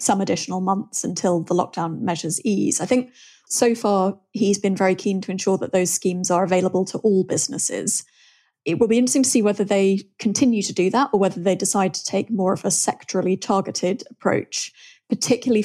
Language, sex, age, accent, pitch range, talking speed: English, female, 30-49, British, 180-205 Hz, 195 wpm